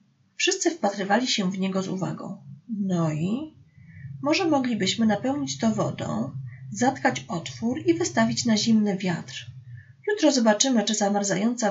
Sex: female